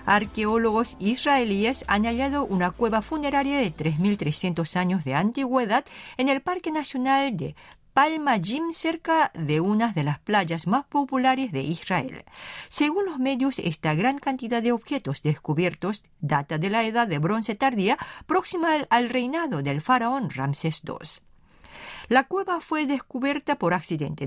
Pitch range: 185-280 Hz